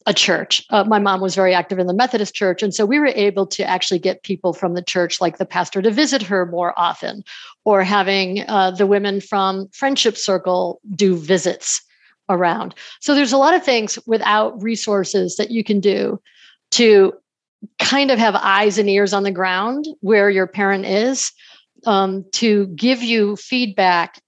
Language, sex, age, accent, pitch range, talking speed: English, female, 50-69, American, 185-215 Hz, 185 wpm